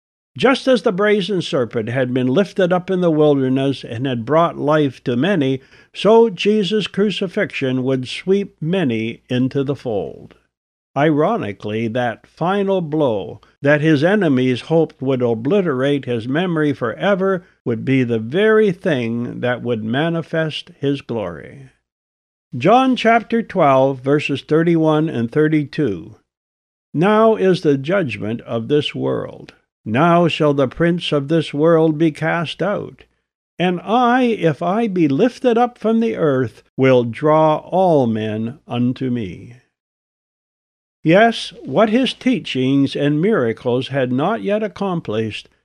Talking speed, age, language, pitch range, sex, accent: 130 wpm, 60-79, English, 130-200 Hz, male, American